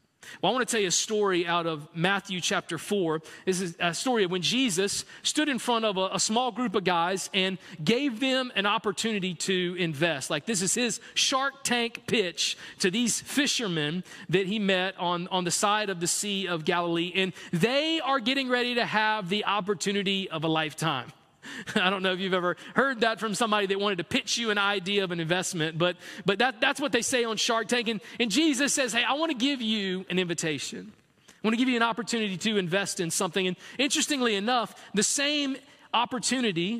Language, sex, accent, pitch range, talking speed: English, male, American, 180-235 Hz, 210 wpm